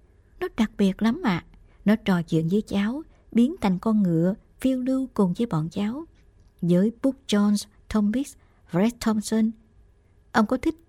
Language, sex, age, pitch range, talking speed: Vietnamese, male, 60-79, 160-220 Hz, 160 wpm